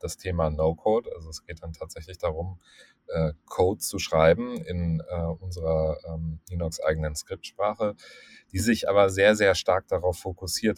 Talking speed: 150 wpm